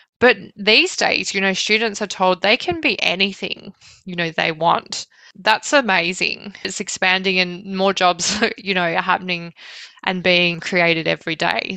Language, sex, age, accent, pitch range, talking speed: English, female, 20-39, Australian, 175-240 Hz, 165 wpm